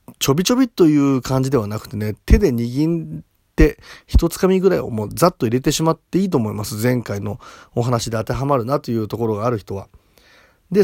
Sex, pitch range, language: male, 110-160 Hz, Japanese